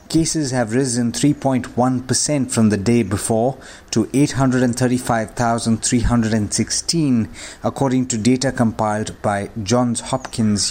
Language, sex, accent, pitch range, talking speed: English, male, Indian, 110-130 Hz, 95 wpm